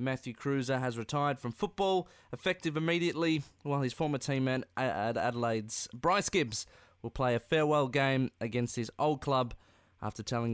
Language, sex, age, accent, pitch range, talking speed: English, male, 20-39, Australian, 110-155 Hz, 155 wpm